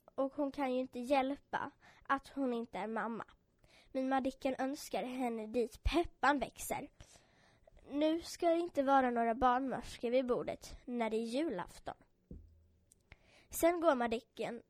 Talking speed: 140 wpm